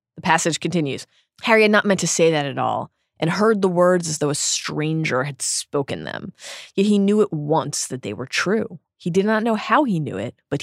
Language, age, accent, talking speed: English, 20-39, American, 230 wpm